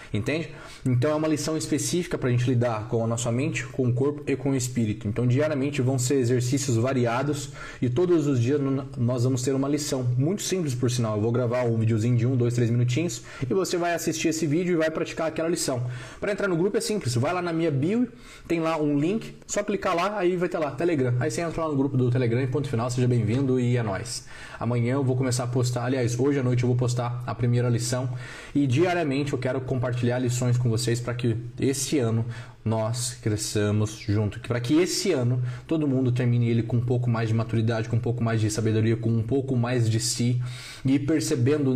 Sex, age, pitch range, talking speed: male, 20-39, 120-145 Hz, 230 wpm